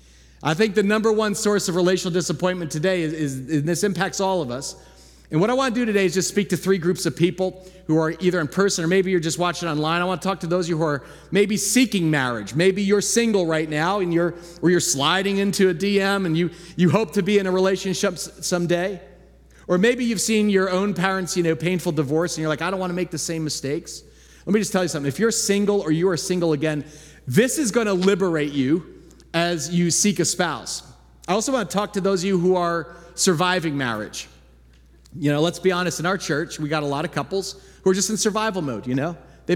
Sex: male